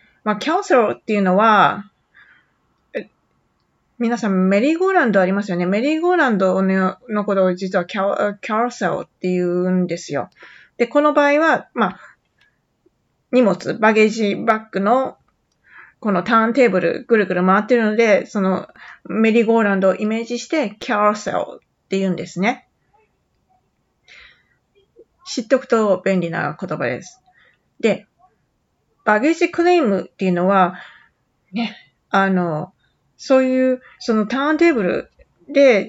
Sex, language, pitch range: female, Japanese, 190-275 Hz